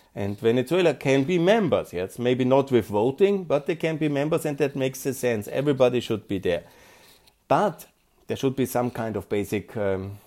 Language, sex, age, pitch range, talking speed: German, male, 50-69, 120-175 Hz, 195 wpm